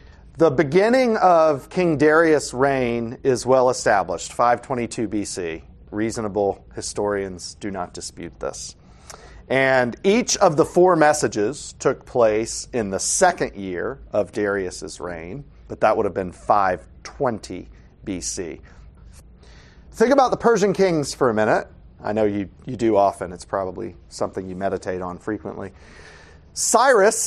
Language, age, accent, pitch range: English, 40-59, American, 95-150 Hz